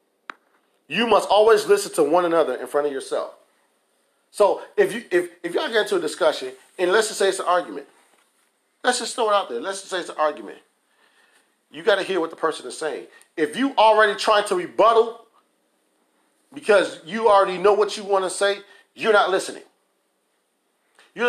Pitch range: 180-255 Hz